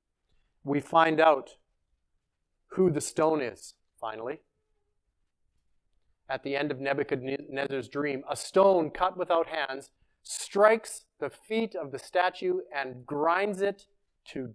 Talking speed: 120 wpm